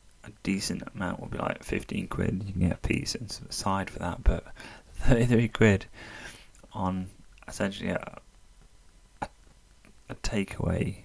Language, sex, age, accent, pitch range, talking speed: English, male, 20-39, British, 85-105 Hz, 140 wpm